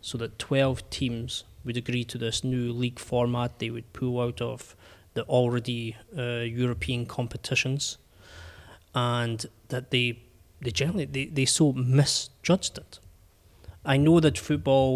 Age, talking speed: 20-39, 140 wpm